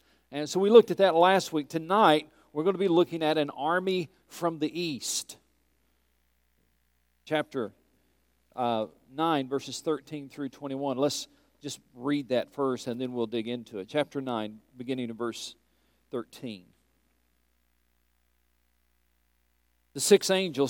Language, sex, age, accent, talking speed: English, male, 40-59, American, 135 wpm